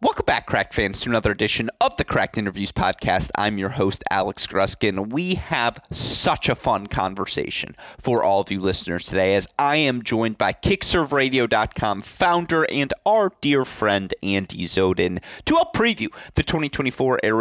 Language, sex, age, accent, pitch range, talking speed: English, male, 30-49, American, 100-130 Hz, 160 wpm